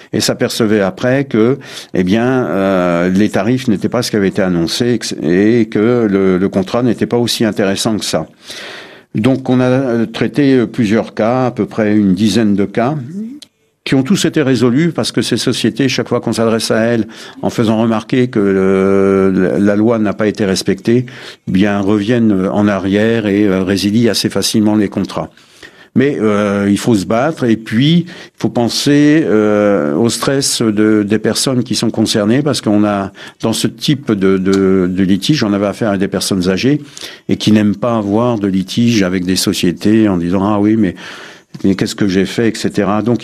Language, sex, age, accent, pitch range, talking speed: French, male, 60-79, French, 100-120 Hz, 185 wpm